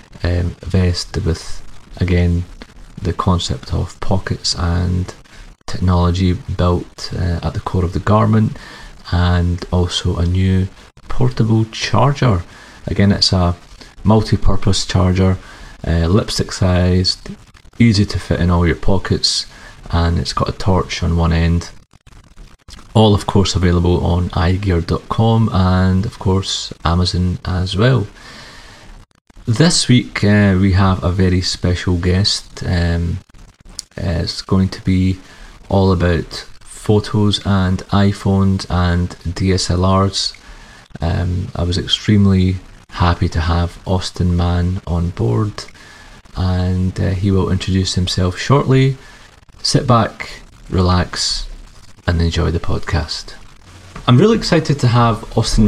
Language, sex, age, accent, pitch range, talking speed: English, male, 30-49, British, 90-105 Hz, 120 wpm